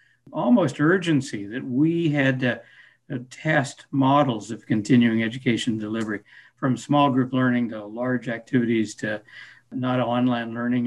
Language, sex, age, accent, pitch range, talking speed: English, male, 60-79, American, 115-145 Hz, 135 wpm